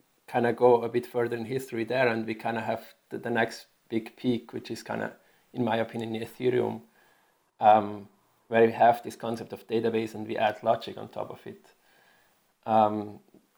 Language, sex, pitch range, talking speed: English, male, 110-125 Hz, 195 wpm